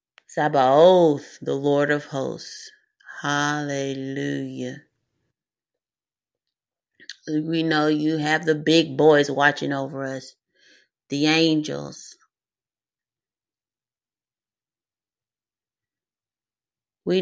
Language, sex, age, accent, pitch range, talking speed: English, female, 30-49, American, 145-180 Hz, 65 wpm